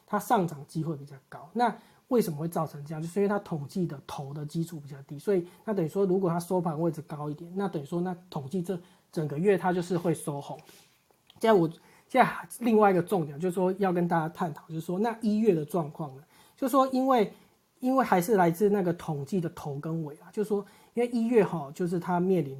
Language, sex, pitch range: Chinese, male, 150-195 Hz